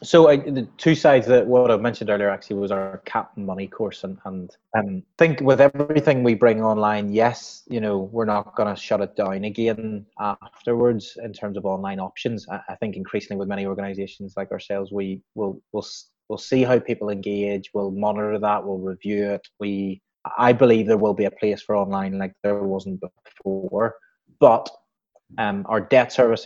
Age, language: 20-39, English